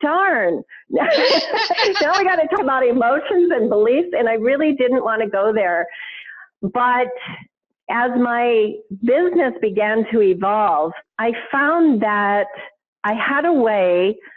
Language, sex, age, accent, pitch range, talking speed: English, female, 50-69, American, 205-260 Hz, 135 wpm